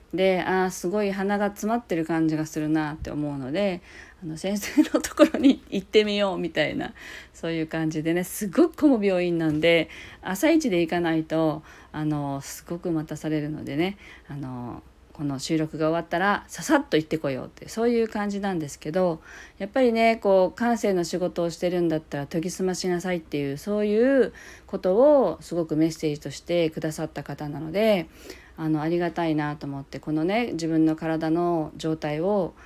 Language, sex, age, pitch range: Japanese, female, 40-59, 155-195 Hz